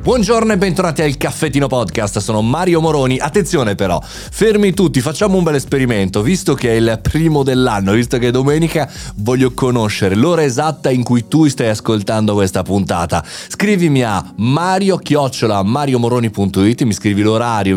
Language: Italian